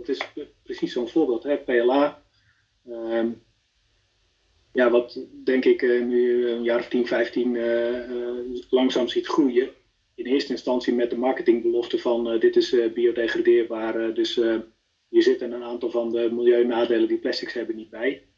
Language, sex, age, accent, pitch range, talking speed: Dutch, male, 30-49, Dutch, 115-170 Hz, 165 wpm